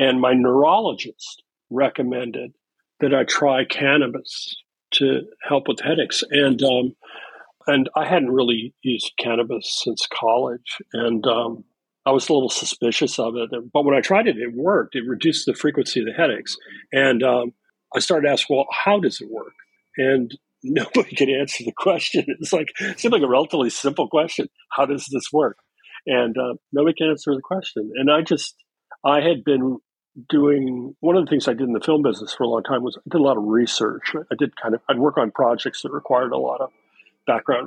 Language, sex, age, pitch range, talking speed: Hebrew, male, 50-69, 115-145 Hz, 200 wpm